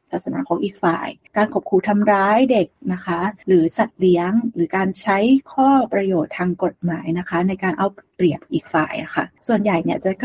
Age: 30-49